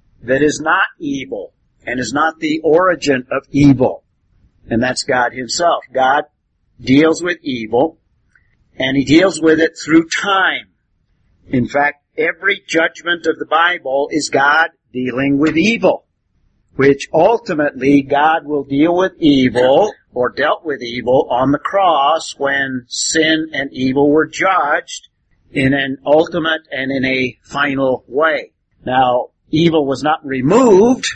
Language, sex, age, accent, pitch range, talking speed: English, male, 50-69, American, 120-160 Hz, 135 wpm